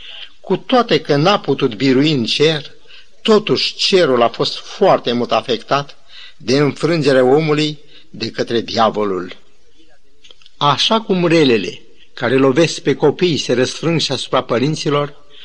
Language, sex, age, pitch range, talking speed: Romanian, male, 50-69, 125-160 Hz, 120 wpm